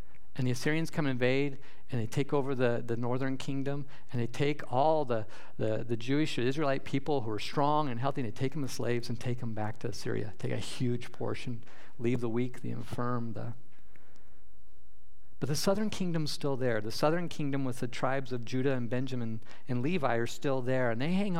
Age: 50-69